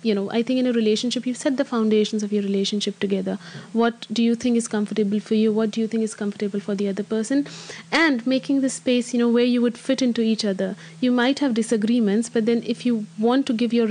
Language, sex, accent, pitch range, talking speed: English, female, Indian, 210-250 Hz, 250 wpm